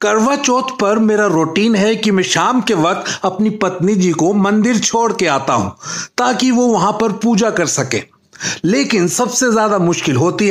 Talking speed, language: 185 wpm, Hindi